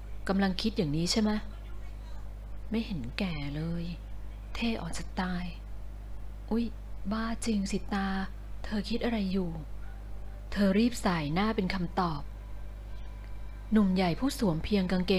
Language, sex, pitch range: Thai, female, 140-205 Hz